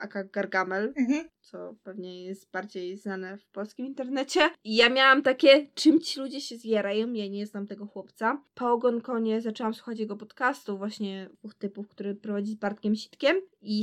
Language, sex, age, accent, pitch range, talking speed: Polish, female, 20-39, native, 205-240 Hz, 170 wpm